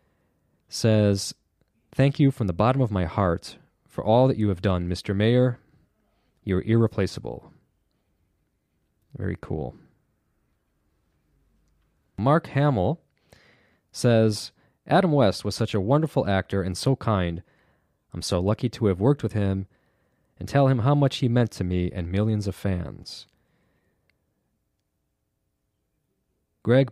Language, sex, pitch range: Japanese, male, 95-125 Hz